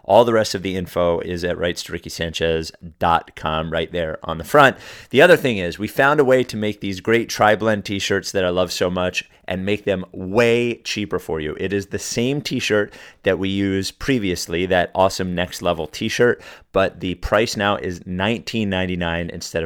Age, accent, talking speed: 30-49, American, 185 wpm